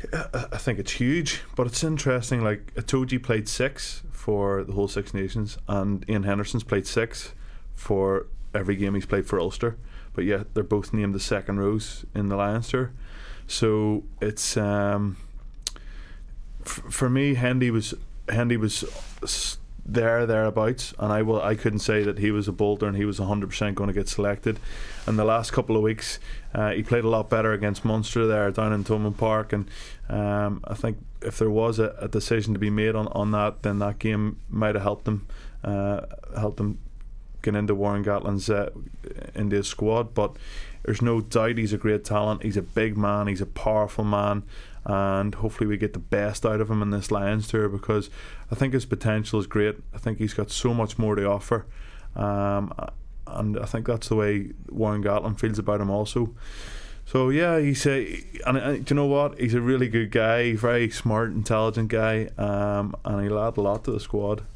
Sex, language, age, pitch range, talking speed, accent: male, English, 20-39, 100-115 Hz, 195 wpm, Irish